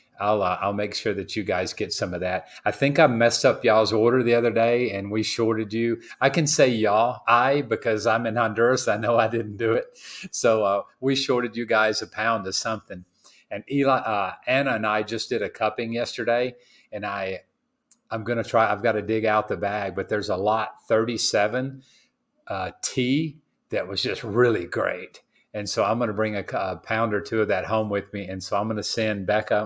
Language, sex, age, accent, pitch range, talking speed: English, male, 40-59, American, 100-115 Hz, 220 wpm